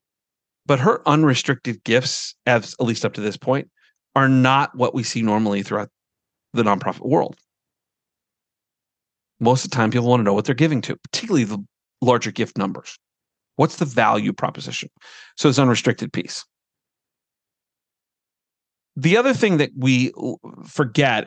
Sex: male